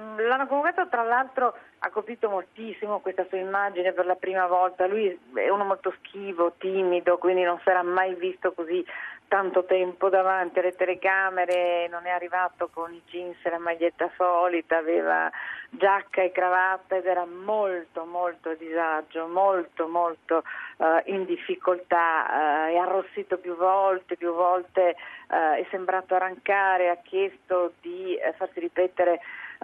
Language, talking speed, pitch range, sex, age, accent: Italian, 150 wpm, 175-200 Hz, female, 40-59, native